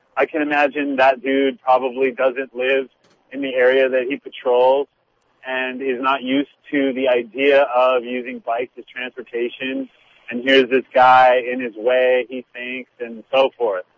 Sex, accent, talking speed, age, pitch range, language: male, American, 165 wpm, 30-49, 125-140 Hz, English